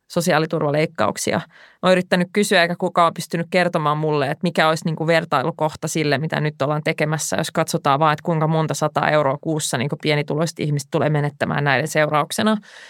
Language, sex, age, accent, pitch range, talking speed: Finnish, female, 20-39, native, 155-180 Hz, 155 wpm